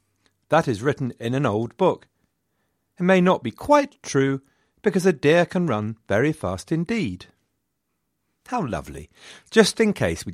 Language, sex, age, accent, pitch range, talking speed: English, male, 40-59, British, 95-135 Hz, 155 wpm